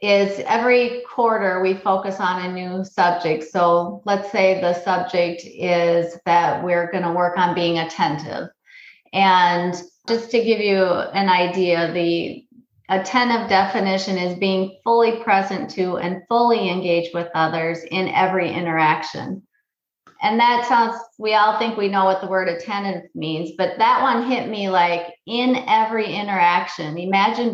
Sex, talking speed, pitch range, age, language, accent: female, 150 wpm, 175-215 Hz, 30-49, English, American